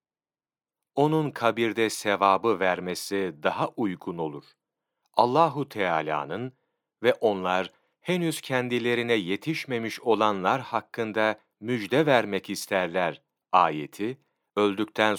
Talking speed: 85 wpm